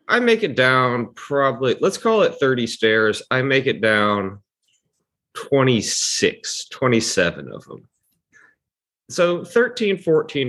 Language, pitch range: English, 90-135 Hz